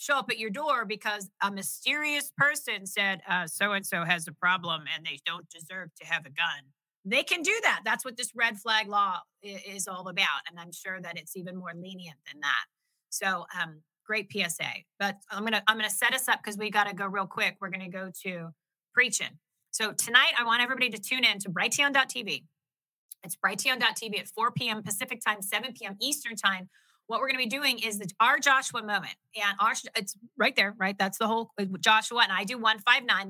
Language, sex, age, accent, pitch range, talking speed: English, female, 30-49, American, 185-225 Hz, 215 wpm